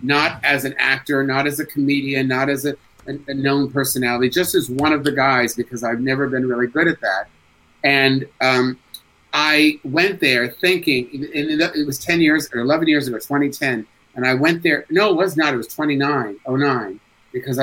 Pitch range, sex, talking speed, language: 125-150 Hz, male, 205 wpm, English